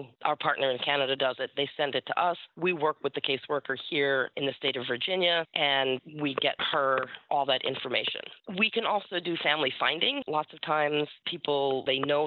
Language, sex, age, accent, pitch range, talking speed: English, female, 30-49, American, 135-170 Hz, 200 wpm